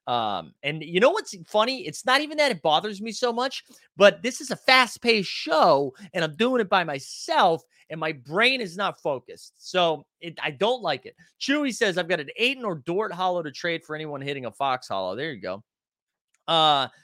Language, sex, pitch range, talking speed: English, male, 130-200 Hz, 210 wpm